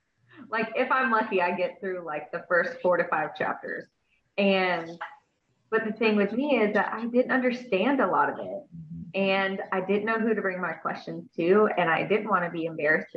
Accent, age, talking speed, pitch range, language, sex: American, 20-39, 210 wpm, 175-215 Hz, English, female